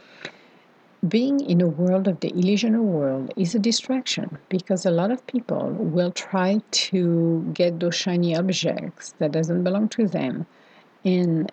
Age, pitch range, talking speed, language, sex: 50-69, 165-215 Hz, 150 wpm, English, female